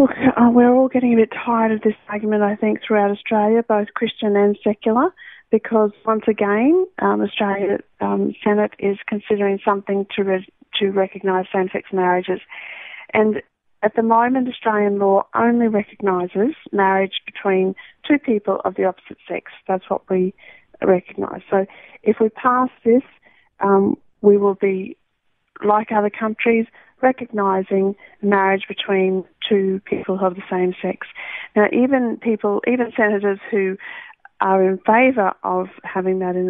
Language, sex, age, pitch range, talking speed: English, female, 30-49, 190-225 Hz, 145 wpm